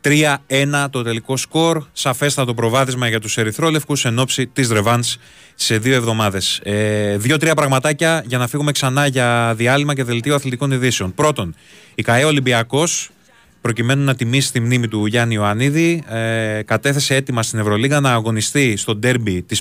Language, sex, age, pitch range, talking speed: Greek, male, 20-39, 110-140 Hz, 155 wpm